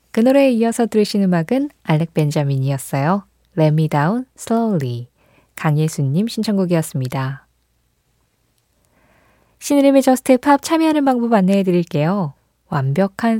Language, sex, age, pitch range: Korean, female, 20-39, 155-230 Hz